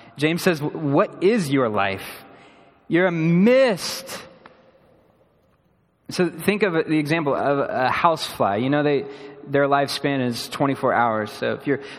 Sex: male